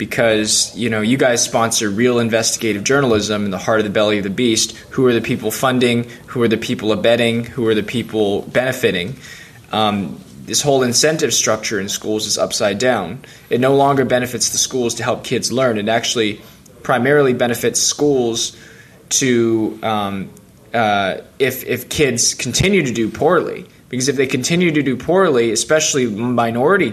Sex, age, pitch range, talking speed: male, 20-39, 110-135 Hz, 170 wpm